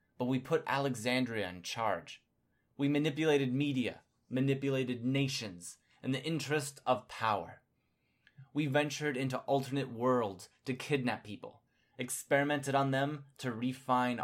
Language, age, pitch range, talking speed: English, 20-39, 110-135 Hz, 120 wpm